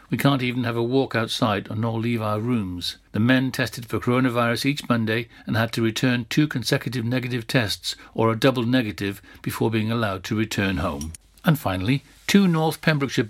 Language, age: English, 60-79